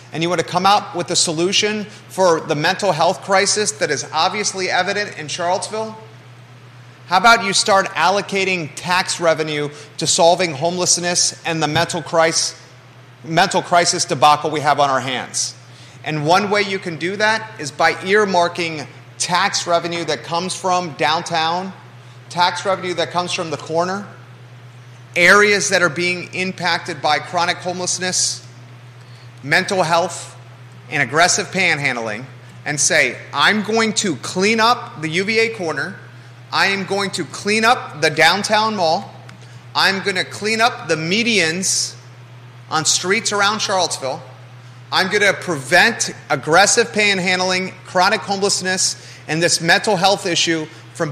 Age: 30-49